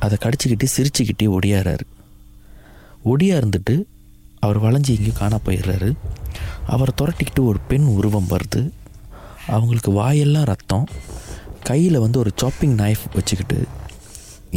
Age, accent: 30-49, native